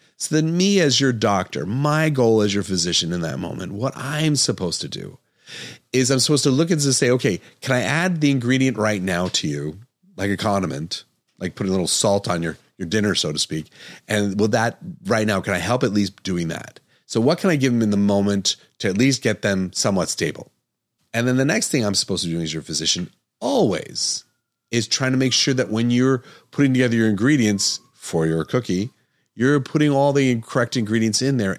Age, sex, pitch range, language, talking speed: 30-49, male, 95-130 Hz, English, 220 wpm